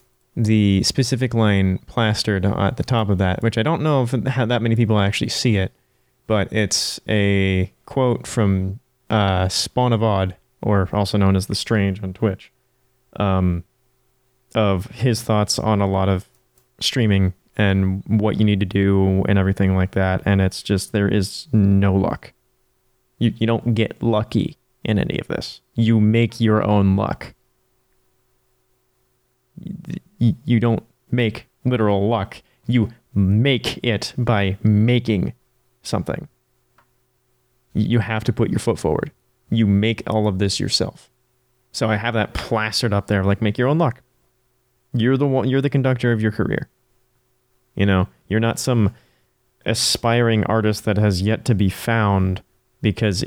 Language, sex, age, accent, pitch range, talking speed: English, male, 20-39, American, 100-125 Hz, 150 wpm